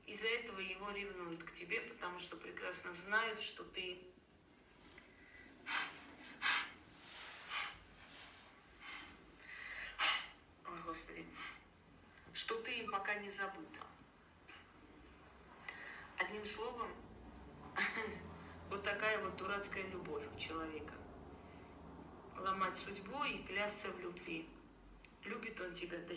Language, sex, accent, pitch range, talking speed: Russian, female, native, 170-210 Hz, 90 wpm